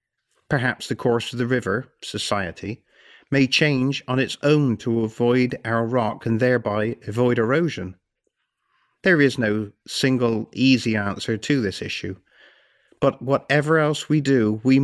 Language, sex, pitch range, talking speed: English, male, 110-135 Hz, 140 wpm